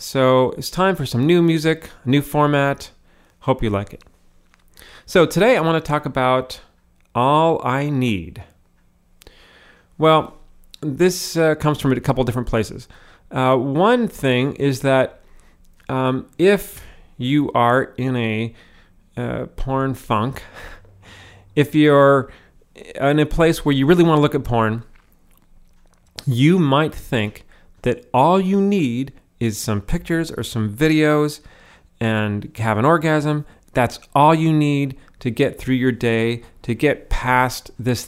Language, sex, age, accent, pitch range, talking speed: English, male, 40-59, American, 100-150 Hz, 140 wpm